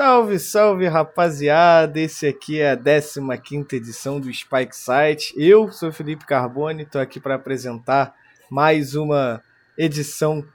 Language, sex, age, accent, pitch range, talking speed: Portuguese, male, 20-39, Brazilian, 135-175 Hz, 130 wpm